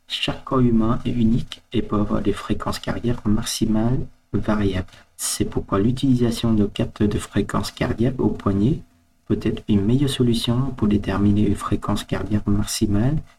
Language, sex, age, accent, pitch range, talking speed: French, male, 40-59, French, 100-120 Hz, 150 wpm